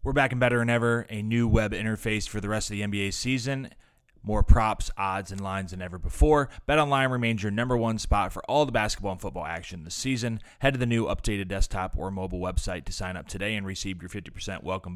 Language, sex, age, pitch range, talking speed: English, male, 30-49, 90-115 Hz, 235 wpm